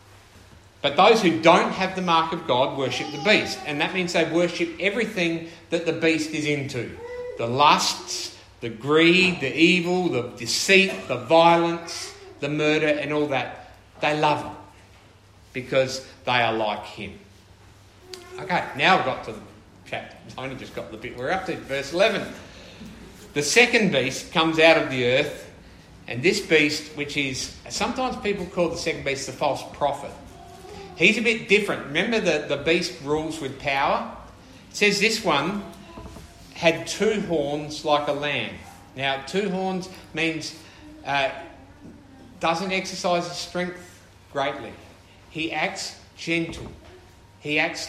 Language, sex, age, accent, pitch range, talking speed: English, male, 50-69, Australian, 110-170 Hz, 155 wpm